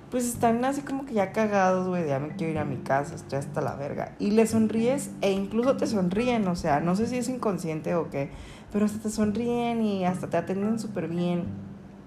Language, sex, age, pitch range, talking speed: Spanish, female, 30-49, 165-220 Hz, 225 wpm